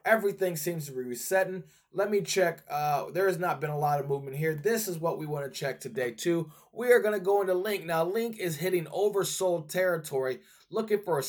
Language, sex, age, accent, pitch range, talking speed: English, male, 20-39, American, 150-190 Hz, 230 wpm